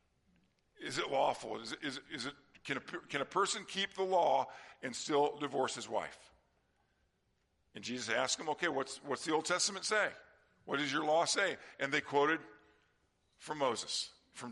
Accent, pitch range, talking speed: American, 120-160 Hz, 180 wpm